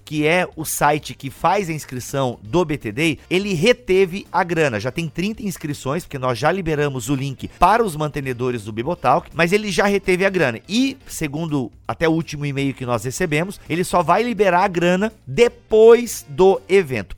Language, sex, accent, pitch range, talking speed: Portuguese, male, Brazilian, 140-190 Hz, 185 wpm